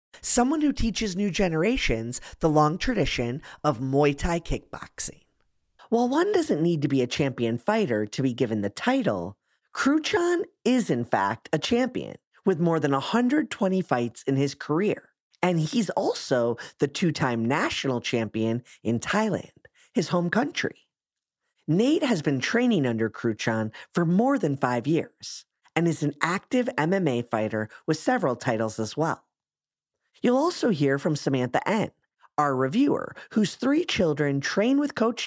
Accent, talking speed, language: American, 150 wpm, English